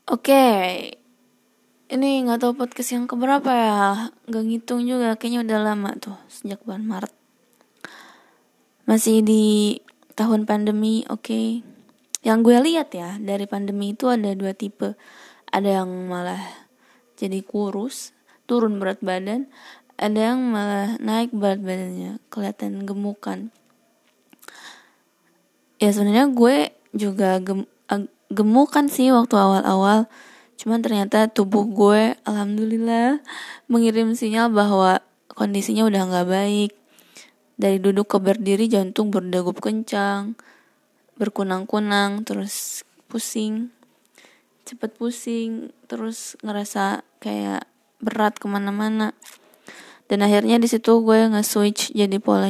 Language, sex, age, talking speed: Indonesian, female, 10-29, 110 wpm